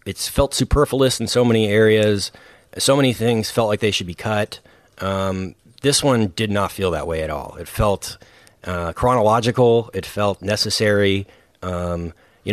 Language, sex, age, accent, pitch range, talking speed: English, male, 30-49, American, 95-115 Hz, 170 wpm